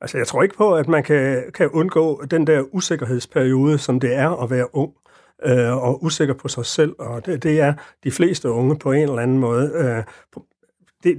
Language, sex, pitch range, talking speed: Danish, male, 130-165 Hz, 200 wpm